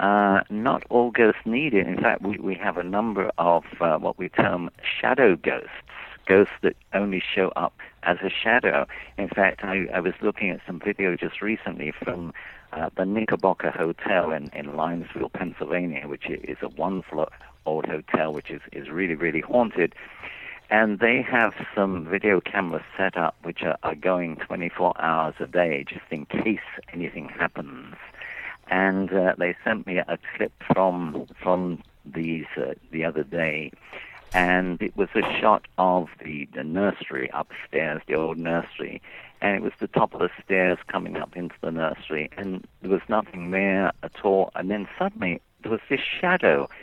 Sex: male